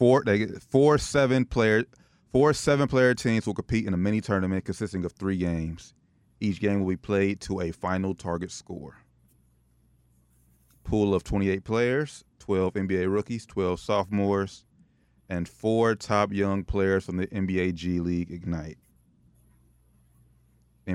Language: English